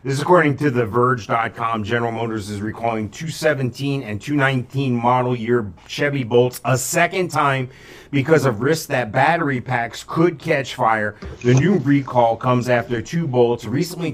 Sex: male